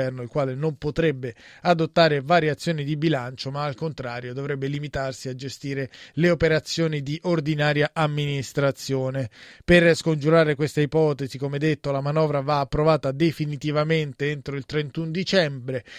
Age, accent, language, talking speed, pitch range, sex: 20-39, native, Italian, 140 wpm, 140-165 Hz, male